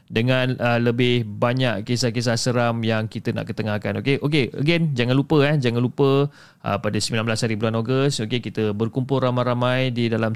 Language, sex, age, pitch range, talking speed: Malay, male, 30-49, 110-135 Hz, 175 wpm